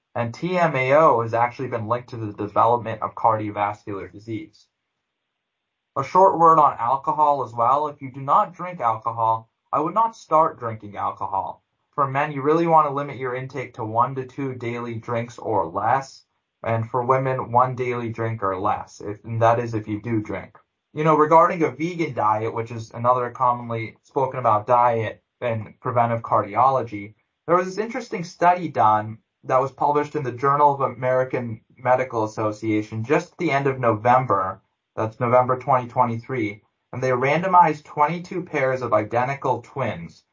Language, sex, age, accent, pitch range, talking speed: English, male, 20-39, American, 115-145 Hz, 165 wpm